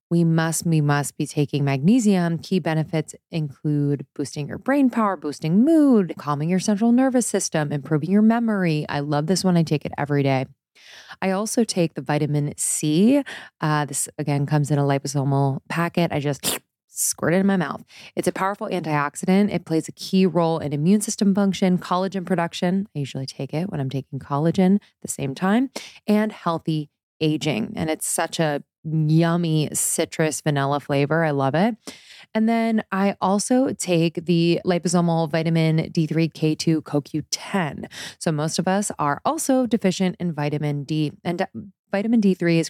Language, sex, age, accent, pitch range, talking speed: English, female, 20-39, American, 150-195 Hz, 170 wpm